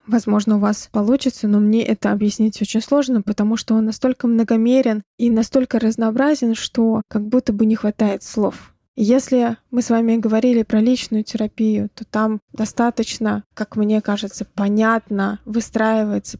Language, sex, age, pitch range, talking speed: Russian, female, 20-39, 210-235 Hz, 150 wpm